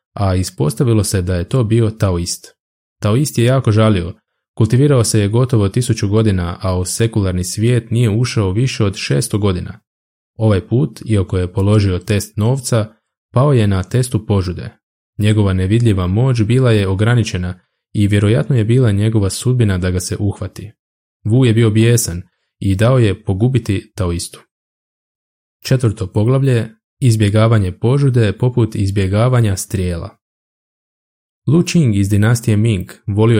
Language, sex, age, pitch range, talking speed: Croatian, male, 20-39, 95-115 Hz, 140 wpm